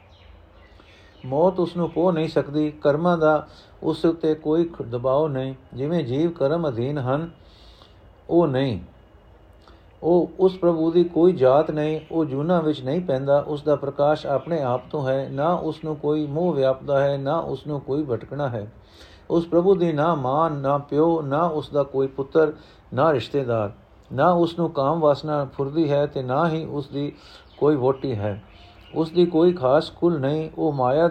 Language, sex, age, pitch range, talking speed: Punjabi, male, 50-69, 135-165 Hz, 170 wpm